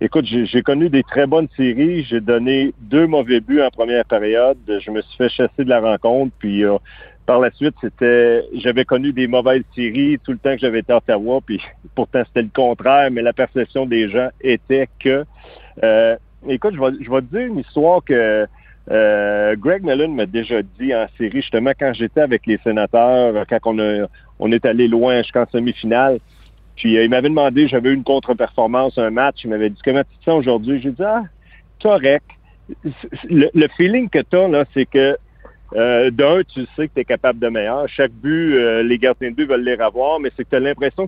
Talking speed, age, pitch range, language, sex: 210 wpm, 50-69, 115-145 Hz, French, male